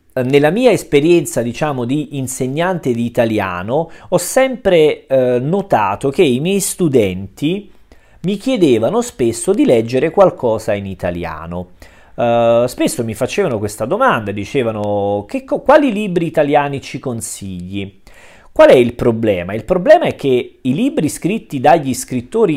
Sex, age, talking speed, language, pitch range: male, 40-59, 130 wpm, Russian, 105-165 Hz